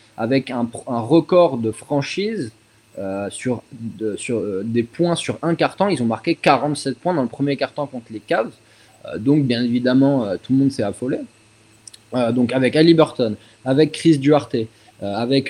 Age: 20-39